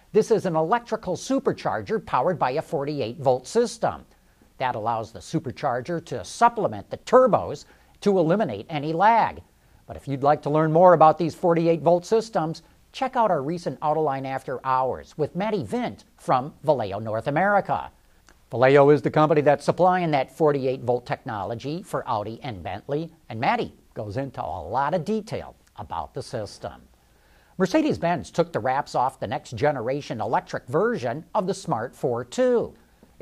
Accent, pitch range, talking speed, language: American, 130-190 Hz, 150 wpm, English